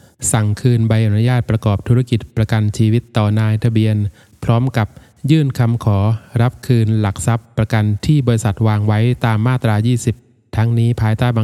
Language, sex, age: Thai, male, 20-39